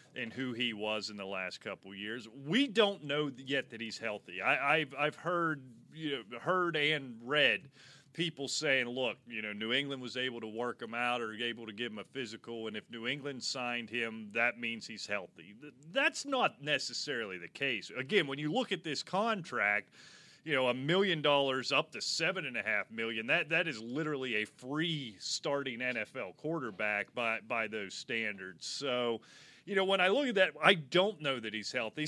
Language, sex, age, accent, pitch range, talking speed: English, male, 30-49, American, 115-155 Hz, 200 wpm